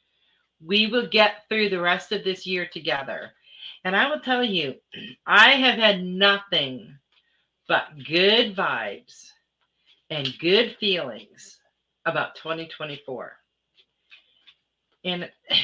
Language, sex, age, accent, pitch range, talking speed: English, female, 40-59, American, 160-210 Hz, 105 wpm